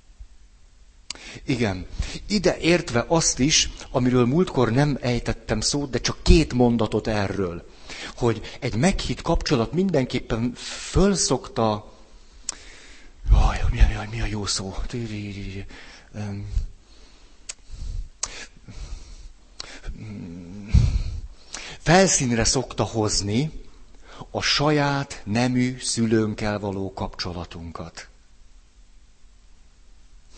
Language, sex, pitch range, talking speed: Hungarian, male, 100-145 Hz, 70 wpm